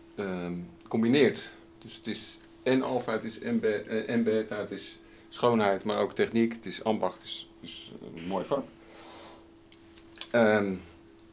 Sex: male